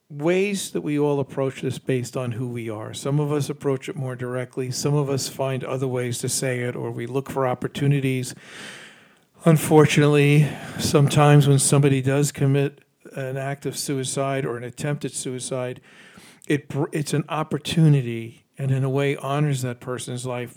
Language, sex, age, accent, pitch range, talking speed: English, male, 50-69, American, 130-150 Hz, 170 wpm